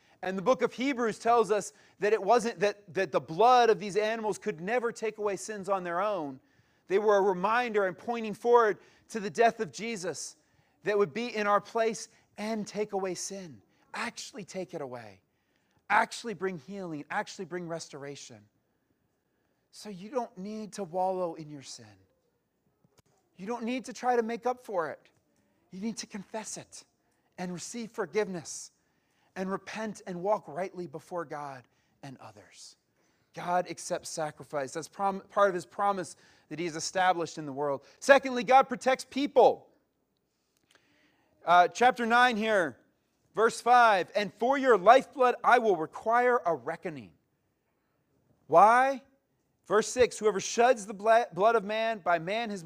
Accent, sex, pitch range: American, male, 165-225 Hz